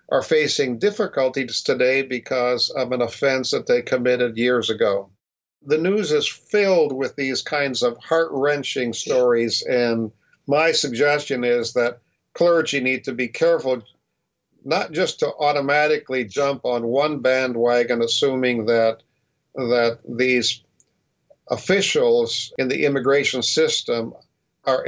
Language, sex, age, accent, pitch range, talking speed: English, male, 50-69, American, 120-155 Hz, 125 wpm